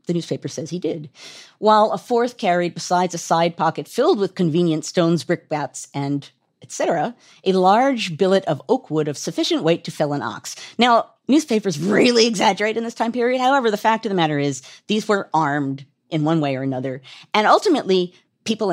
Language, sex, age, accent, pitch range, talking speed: English, female, 40-59, American, 160-235 Hz, 190 wpm